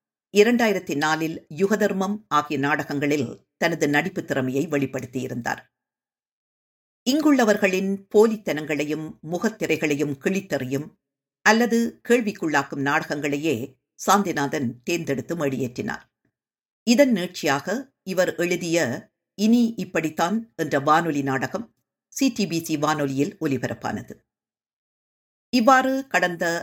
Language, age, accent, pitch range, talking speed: Tamil, 50-69, native, 140-195 Hz, 80 wpm